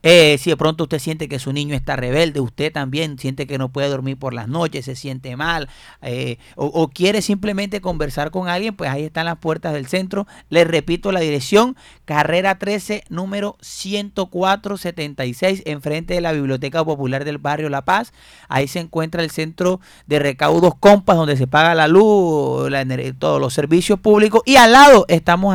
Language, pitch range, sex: Spanish, 140-185 Hz, male